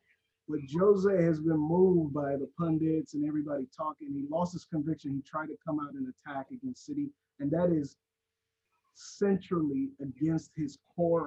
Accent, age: American, 30-49